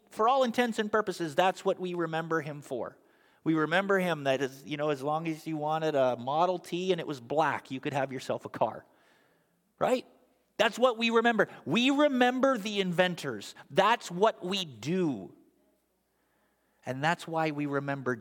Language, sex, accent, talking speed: English, male, American, 175 wpm